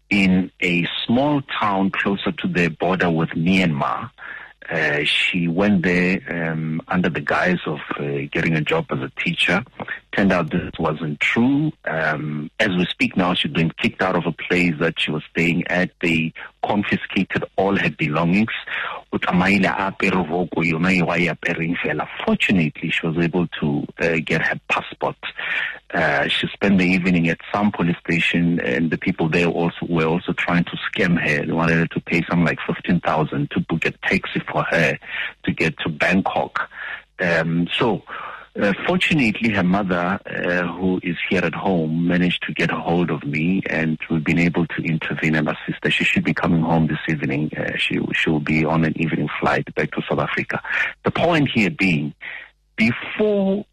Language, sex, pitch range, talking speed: English, male, 80-90 Hz, 170 wpm